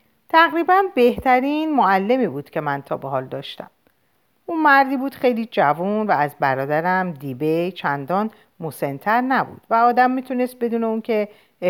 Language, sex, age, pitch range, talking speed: Persian, female, 50-69, 145-235 Hz, 145 wpm